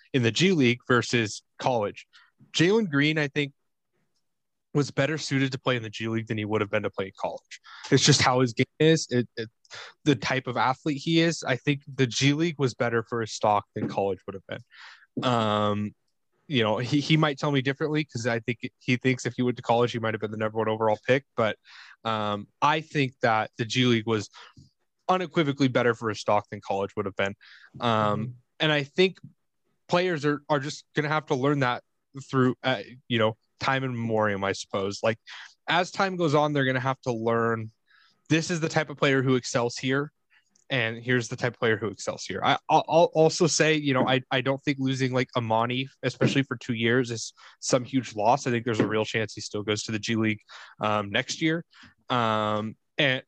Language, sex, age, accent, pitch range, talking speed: English, male, 20-39, American, 115-145 Hz, 215 wpm